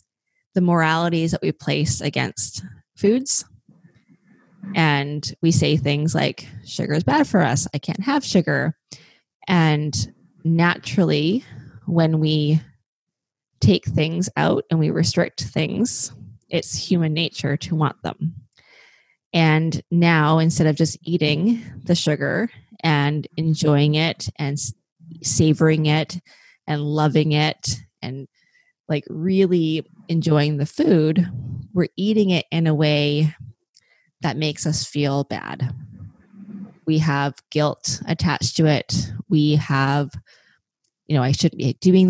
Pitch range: 145-170 Hz